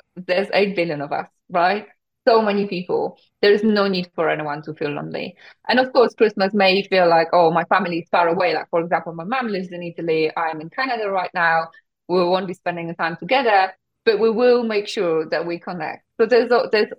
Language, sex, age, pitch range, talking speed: English, female, 20-39, 160-205 Hz, 220 wpm